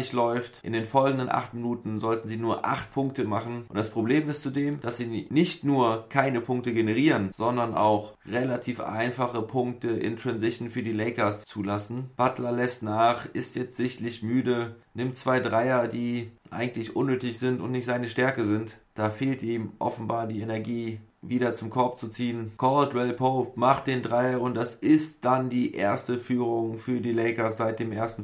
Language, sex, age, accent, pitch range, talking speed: German, male, 30-49, German, 115-125 Hz, 175 wpm